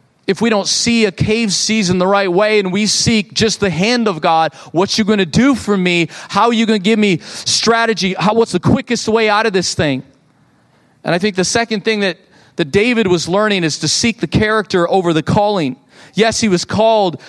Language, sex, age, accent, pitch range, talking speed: English, male, 30-49, American, 155-200 Hz, 230 wpm